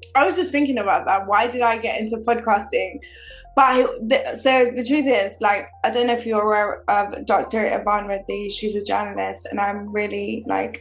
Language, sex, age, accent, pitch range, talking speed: English, female, 20-39, British, 210-255 Hz, 195 wpm